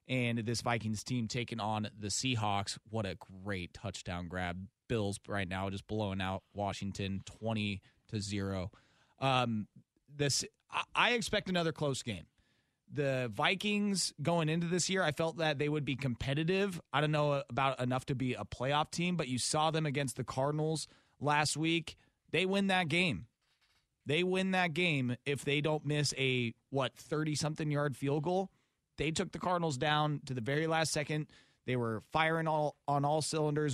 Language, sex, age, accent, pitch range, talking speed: English, male, 30-49, American, 125-165 Hz, 175 wpm